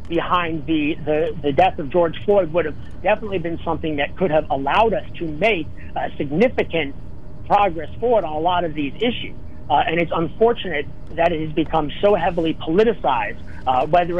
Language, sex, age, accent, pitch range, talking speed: English, male, 40-59, American, 155-195 Hz, 180 wpm